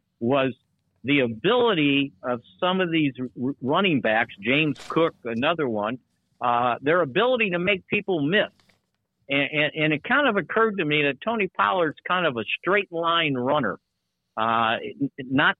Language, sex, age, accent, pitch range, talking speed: English, male, 50-69, American, 120-155 Hz, 155 wpm